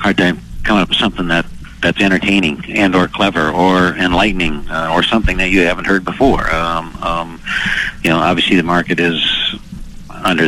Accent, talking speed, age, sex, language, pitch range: American, 180 wpm, 50-69, male, English, 85-100 Hz